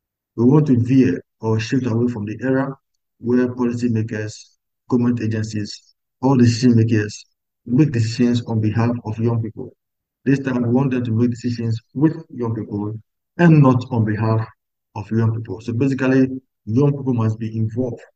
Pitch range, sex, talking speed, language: 110-125 Hz, male, 160 wpm, English